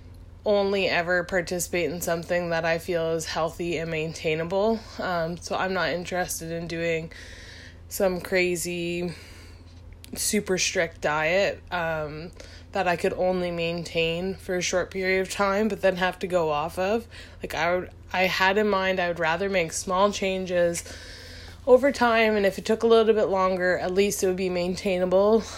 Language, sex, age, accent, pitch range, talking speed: English, female, 20-39, American, 165-200 Hz, 170 wpm